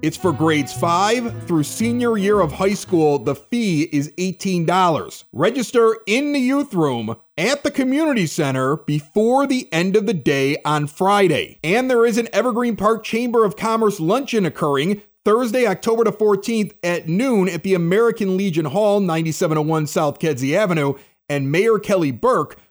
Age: 30-49